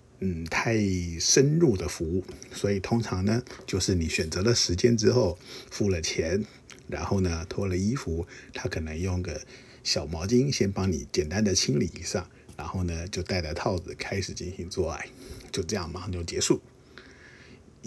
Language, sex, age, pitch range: Chinese, male, 50-69, 90-120 Hz